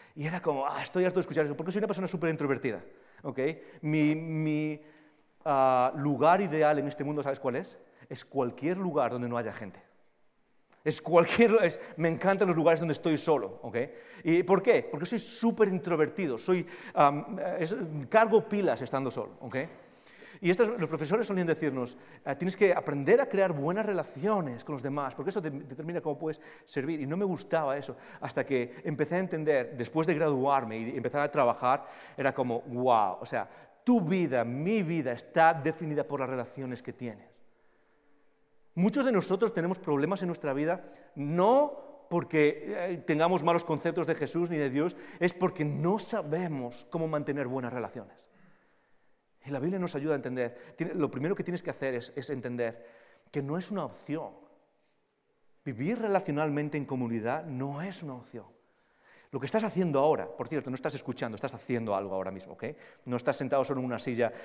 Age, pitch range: 40-59, 135-180 Hz